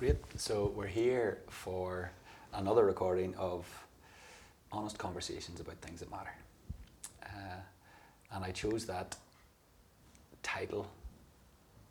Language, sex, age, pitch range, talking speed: English, male, 30-49, 90-100 Hz, 100 wpm